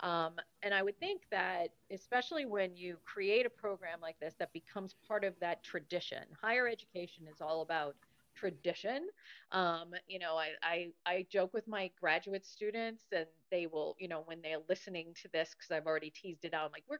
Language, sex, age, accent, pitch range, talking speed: English, female, 40-59, American, 165-210 Hz, 200 wpm